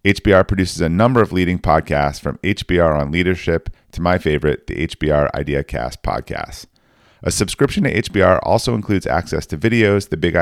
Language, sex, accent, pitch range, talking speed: English, male, American, 75-95 Hz, 165 wpm